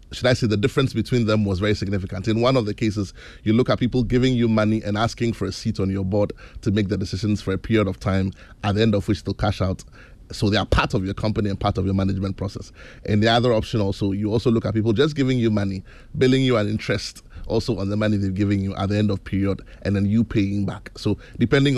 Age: 20-39